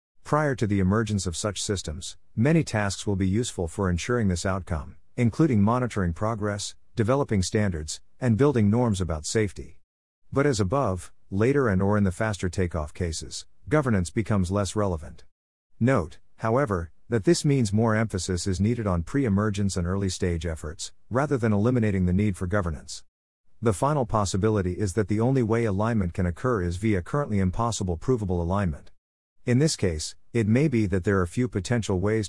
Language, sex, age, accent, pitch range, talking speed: English, male, 50-69, American, 90-115 Hz, 170 wpm